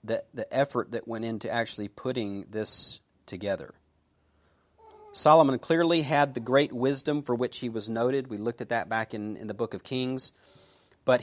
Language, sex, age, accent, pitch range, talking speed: English, male, 40-59, American, 115-150 Hz, 175 wpm